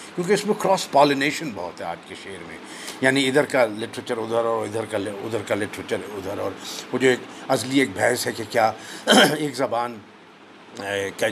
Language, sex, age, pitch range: Urdu, male, 50-69, 120-185 Hz